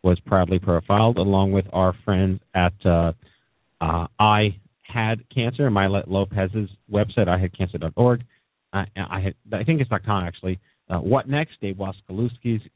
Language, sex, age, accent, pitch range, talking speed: English, male, 40-59, American, 90-115 Hz, 135 wpm